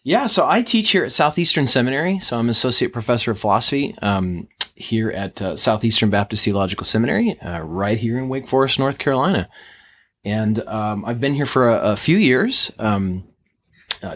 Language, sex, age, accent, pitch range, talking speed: English, male, 30-49, American, 105-135 Hz, 180 wpm